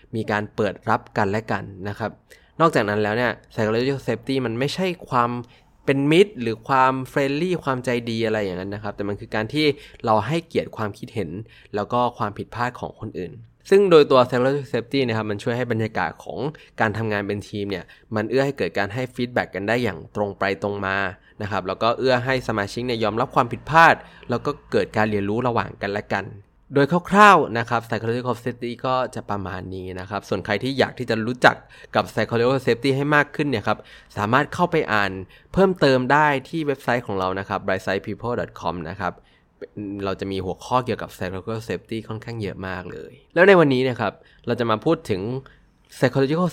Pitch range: 105-130 Hz